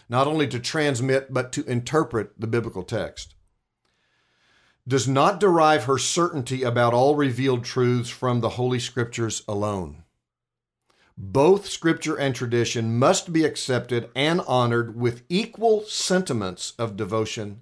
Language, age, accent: English, 50-69, American